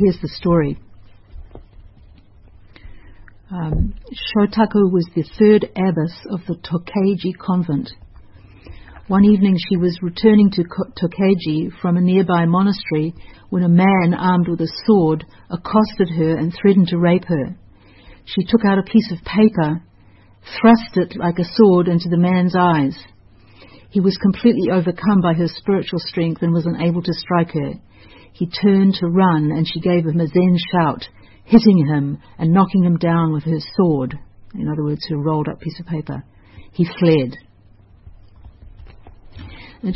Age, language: 50-69, English